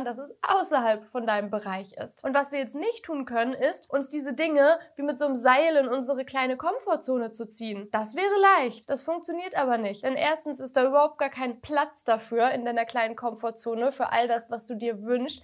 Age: 20-39